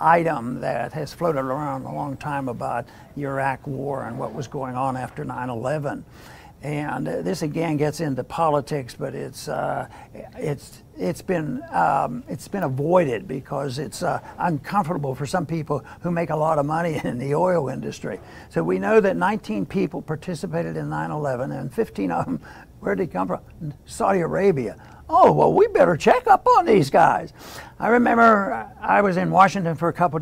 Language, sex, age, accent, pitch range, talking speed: English, male, 60-79, American, 145-195 Hz, 185 wpm